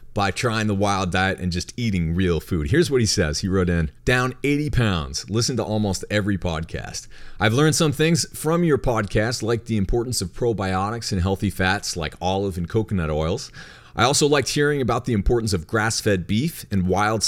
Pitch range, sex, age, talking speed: 90-120 Hz, male, 40-59, 200 wpm